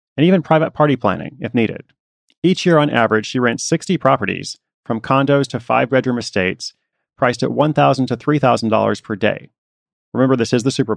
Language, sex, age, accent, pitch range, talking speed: English, male, 30-49, American, 110-135 Hz, 180 wpm